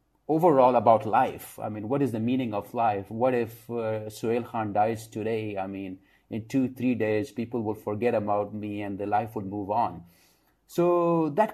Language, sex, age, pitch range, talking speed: English, male, 30-49, 110-130 Hz, 190 wpm